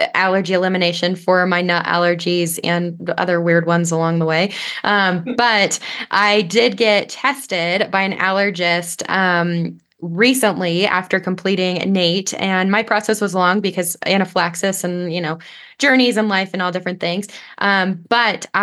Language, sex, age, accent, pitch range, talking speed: English, female, 20-39, American, 175-205 Hz, 150 wpm